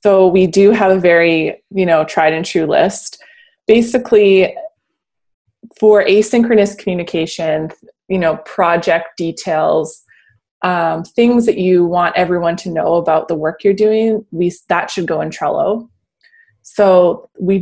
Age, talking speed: 20-39, 135 wpm